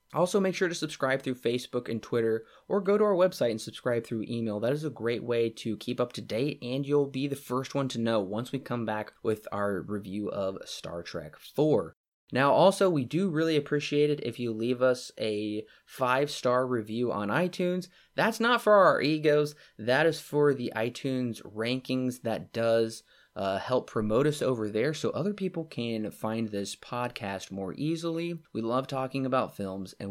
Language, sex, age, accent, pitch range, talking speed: English, male, 20-39, American, 110-150 Hz, 195 wpm